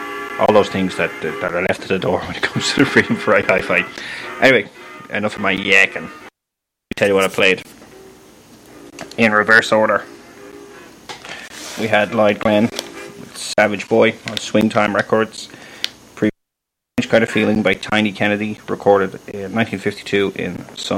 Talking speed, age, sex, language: 160 wpm, 30-49, male, English